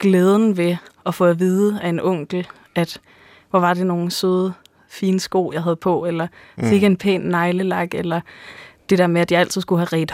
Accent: native